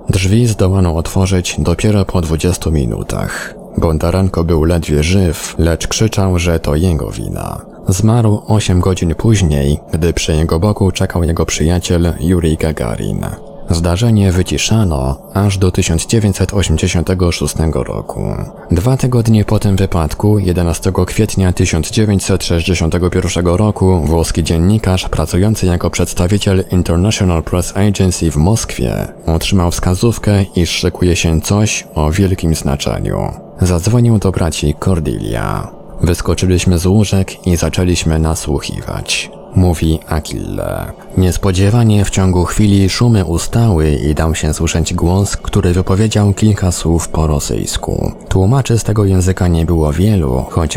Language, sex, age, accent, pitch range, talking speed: Polish, male, 20-39, native, 80-100 Hz, 120 wpm